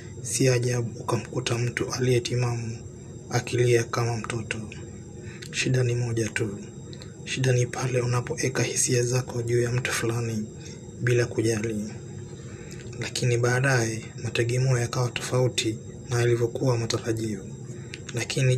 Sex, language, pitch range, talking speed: male, Swahili, 115-125 Hz, 105 wpm